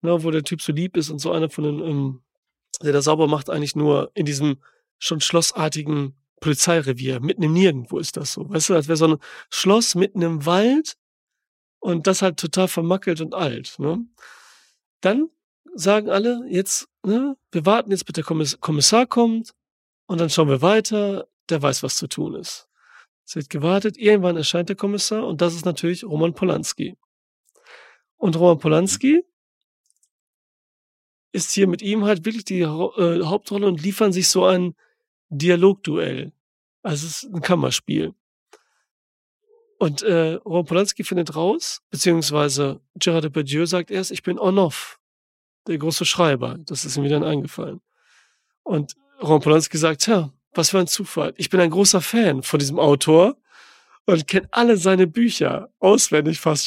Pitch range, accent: 155-200 Hz, German